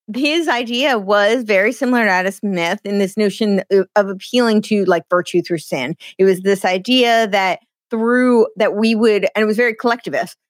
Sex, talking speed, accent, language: female, 185 wpm, American, English